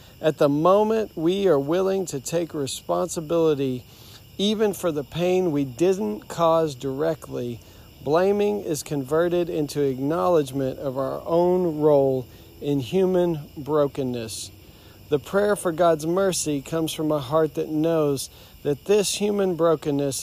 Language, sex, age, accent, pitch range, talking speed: English, male, 40-59, American, 135-165 Hz, 130 wpm